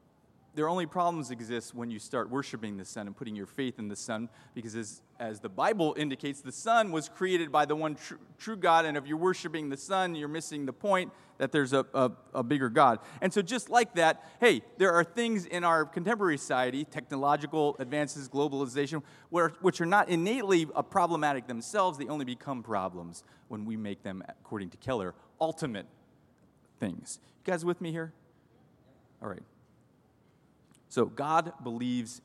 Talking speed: 180 wpm